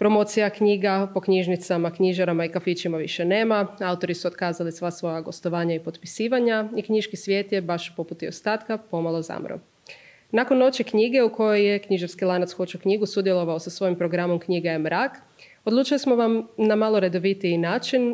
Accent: Croatian